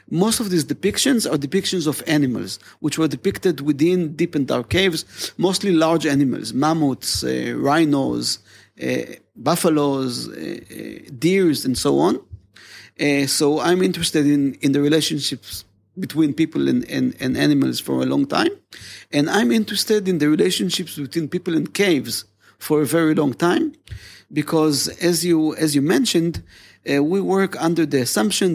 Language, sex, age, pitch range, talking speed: English, male, 40-59, 145-185 Hz, 155 wpm